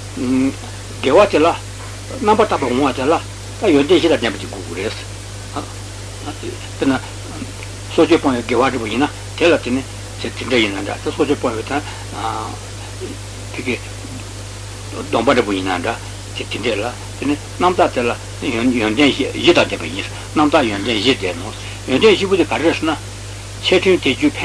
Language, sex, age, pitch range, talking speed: Italian, male, 60-79, 100-110 Hz, 40 wpm